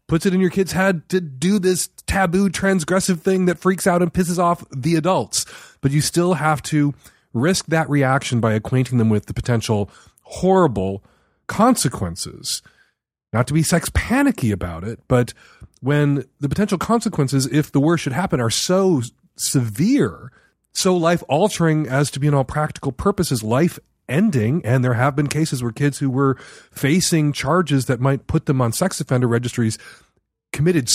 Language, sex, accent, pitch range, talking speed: English, male, American, 115-170 Hz, 170 wpm